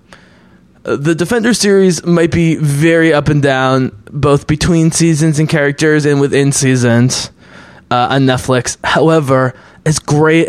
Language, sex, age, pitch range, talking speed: English, male, 20-39, 130-180 Hz, 130 wpm